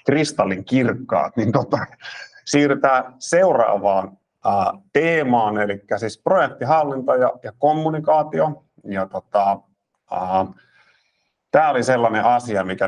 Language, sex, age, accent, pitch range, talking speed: Finnish, male, 50-69, native, 100-125 Hz, 95 wpm